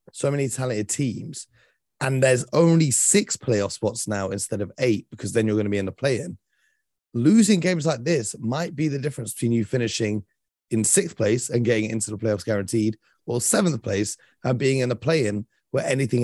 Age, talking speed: 30-49, 205 wpm